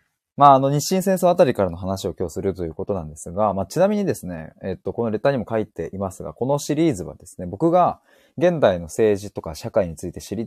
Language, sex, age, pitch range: Japanese, male, 20-39, 95-140 Hz